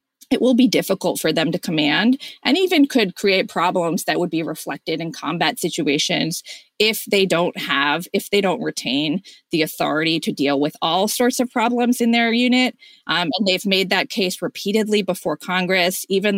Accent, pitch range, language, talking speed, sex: American, 165-215 Hz, English, 185 wpm, female